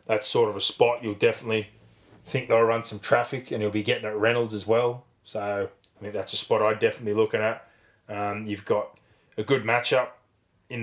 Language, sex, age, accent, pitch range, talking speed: English, male, 20-39, Australian, 105-115 Hz, 210 wpm